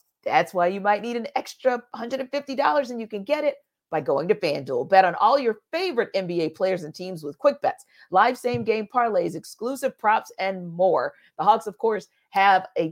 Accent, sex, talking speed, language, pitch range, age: American, female, 195 wpm, English, 185-270 Hz, 40-59